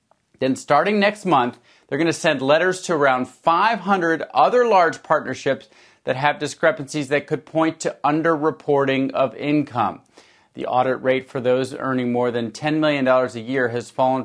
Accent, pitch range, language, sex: American, 125-155 Hz, English, male